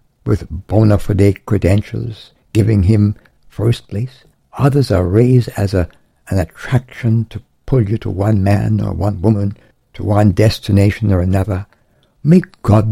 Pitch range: 100-145 Hz